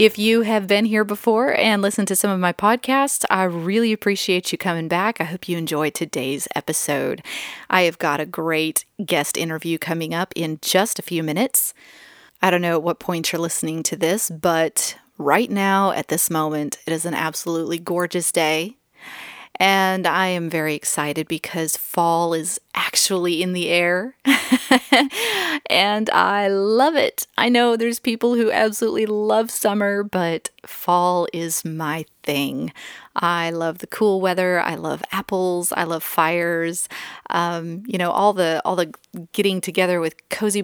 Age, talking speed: 30-49, 165 wpm